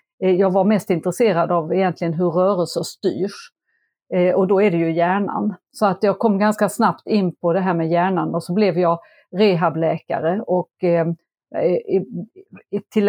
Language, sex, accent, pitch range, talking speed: Swedish, female, native, 170-205 Hz, 155 wpm